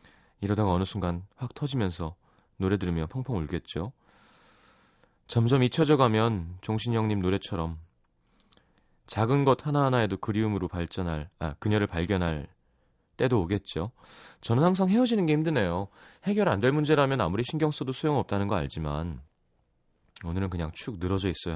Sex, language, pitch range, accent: male, Korean, 80-130 Hz, native